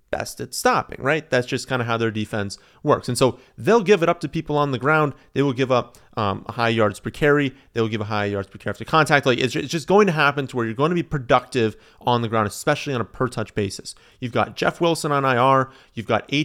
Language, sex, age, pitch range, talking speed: English, male, 30-49, 115-160 Hz, 265 wpm